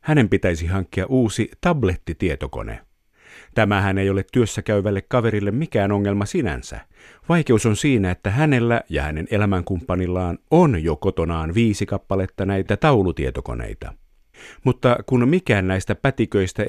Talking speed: 120 wpm